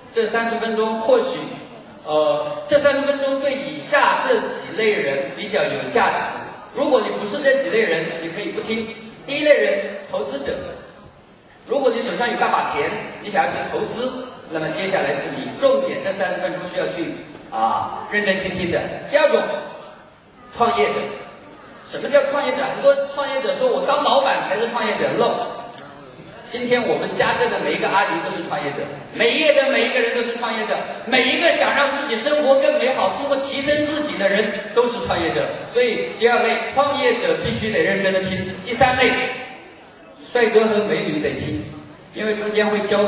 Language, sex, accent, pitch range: Chinese, male, native, 220-280 Hz